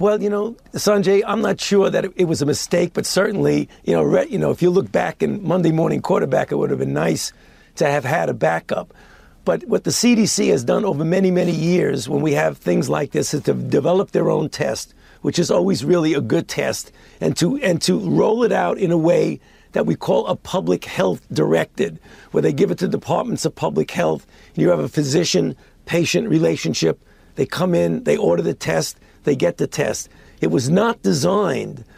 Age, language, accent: 50-69, English, American